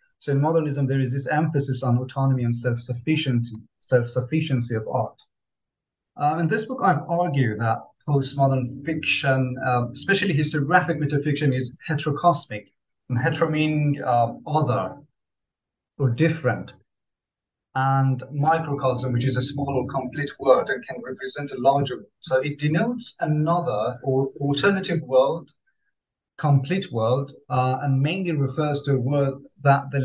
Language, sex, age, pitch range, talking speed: English, male, 30-49, 130-155 Hz, 140 wpm